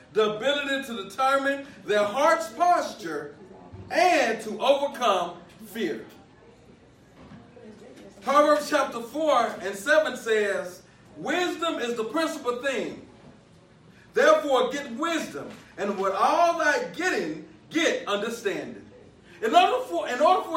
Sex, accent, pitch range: male, American, 220-300 Hz